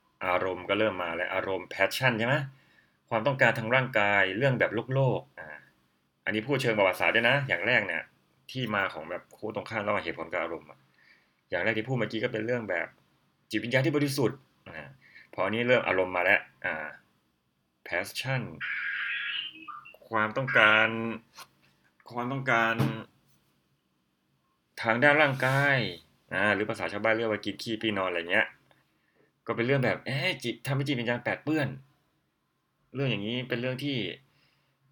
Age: 20-39